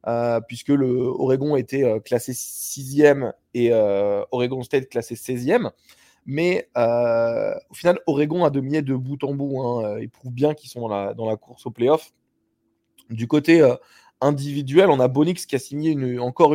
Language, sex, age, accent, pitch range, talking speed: French, male, 20-39, French, 125-155 Hz, 175 wpm